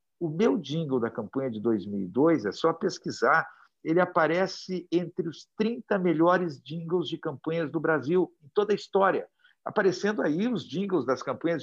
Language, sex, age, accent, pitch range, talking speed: Portuguese, male, 60-79, Brazilian, 140-185 Hz, 160 wpm